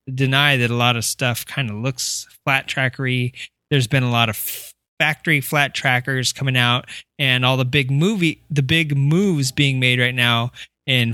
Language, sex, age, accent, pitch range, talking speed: English, male, 20-39, American, 130-155 Hz, 185 wpm